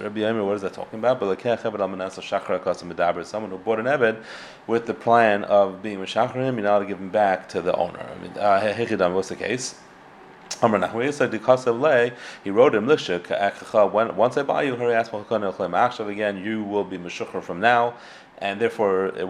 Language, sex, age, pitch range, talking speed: English, male, 30-49, 95-110 Hz, 225 wpm